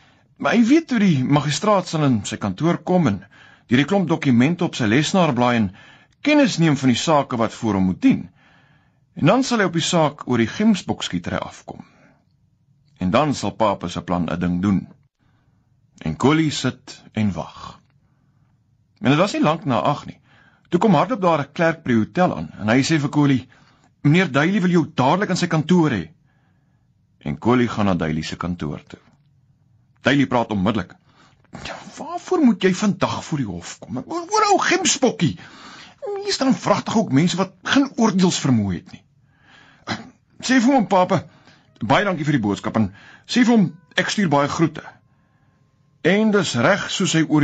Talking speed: 180 wpm